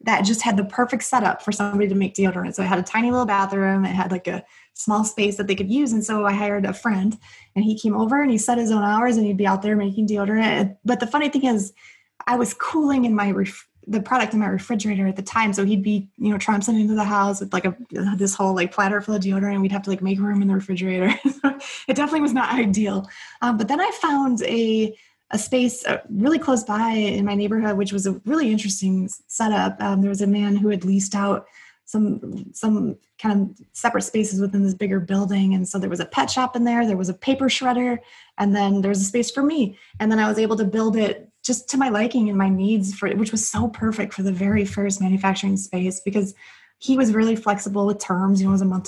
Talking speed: 255 wpm